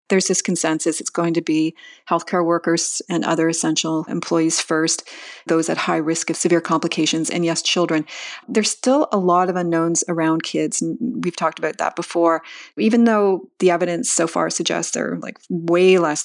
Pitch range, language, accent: 160-195 Hz, English, American